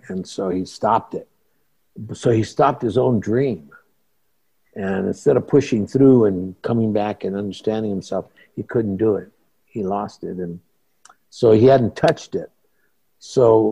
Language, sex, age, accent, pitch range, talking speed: English, male, 60-79, American, 100-115 Hz, 155 wpm